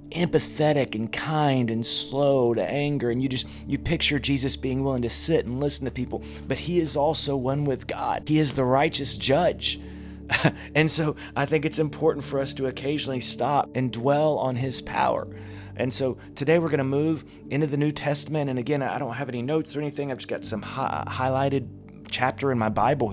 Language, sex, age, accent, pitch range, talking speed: English, male, 30-49, American, 120-145 Hz, 200 wpm